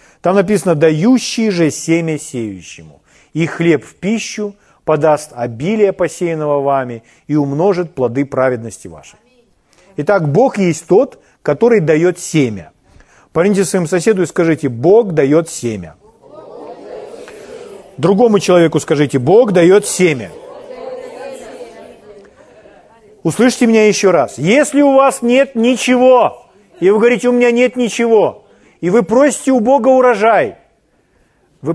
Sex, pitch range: male, 160-235 Hz